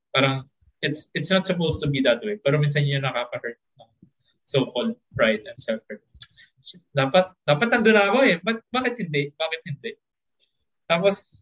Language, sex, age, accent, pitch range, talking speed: Filipino, male, 20-39, native, 135-175 Hz, 150 wpm